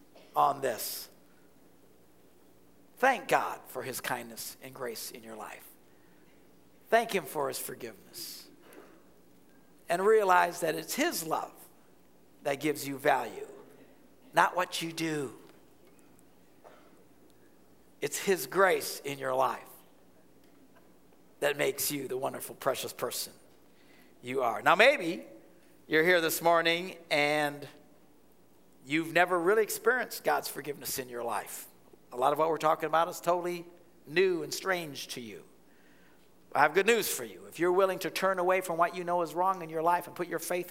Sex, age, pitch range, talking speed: male, 50-69, 150-180 Hz, 150 wpm